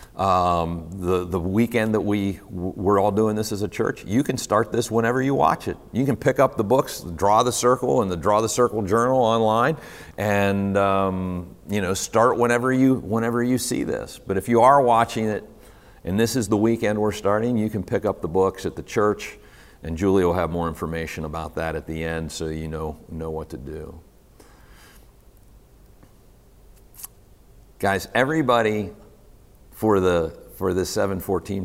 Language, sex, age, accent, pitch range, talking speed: English, male, 50-69, American, 95-120 Hz, 180 wpm